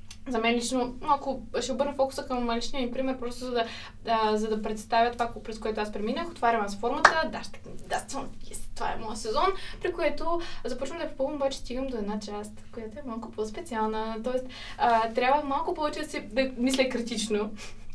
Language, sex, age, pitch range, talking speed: Bulgarian, female, 20-39, 225-280 Hz, 185 wpm